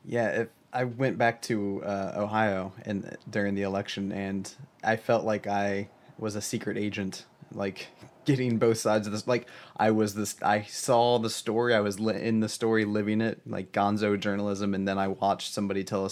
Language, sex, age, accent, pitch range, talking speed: English, male, 20-39, American, 100-110 Hz, 195 wpm